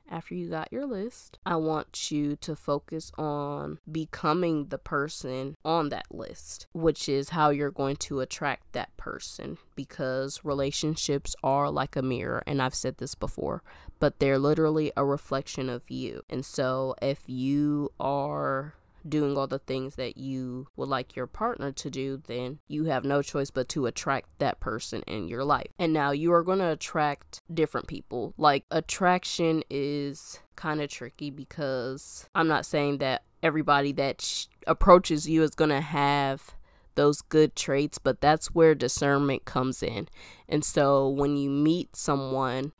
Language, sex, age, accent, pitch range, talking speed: English, female, 20-39, American, 135-155 Hz, 165 wpm